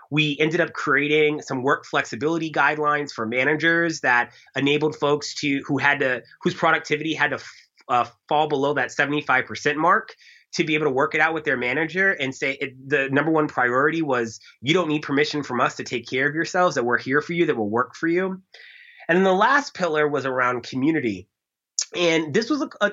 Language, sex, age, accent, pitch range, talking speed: English, male, 30-49, American, 130-160 Hz, 210 wpm